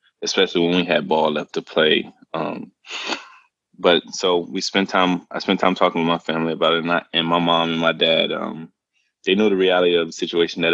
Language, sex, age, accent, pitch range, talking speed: English, male, 20-39, American, 85-95 Hz, 220 wpm